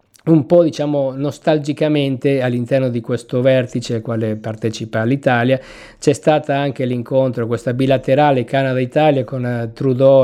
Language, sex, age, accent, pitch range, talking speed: Italian, male, 50-69, native, 120-135 Hz, 125 wpm